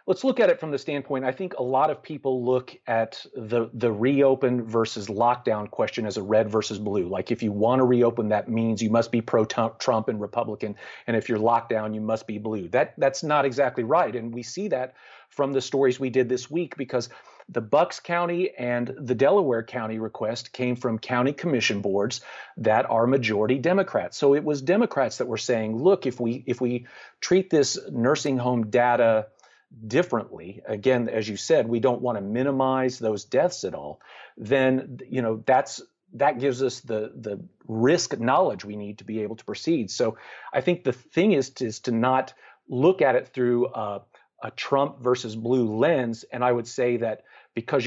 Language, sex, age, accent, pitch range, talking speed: English, male, 40-59, American, 115-135 Hz, 200 wpm